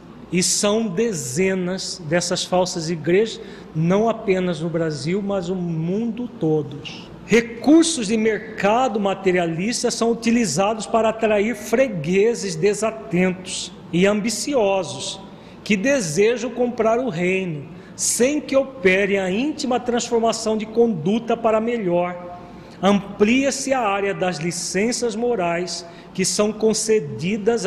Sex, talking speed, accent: male, 110 wpm, Brazilian